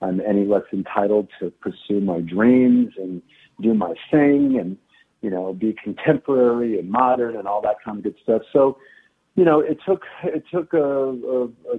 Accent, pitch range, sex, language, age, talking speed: American, 95-125 Hz, male, English, 50-69, 180 wpm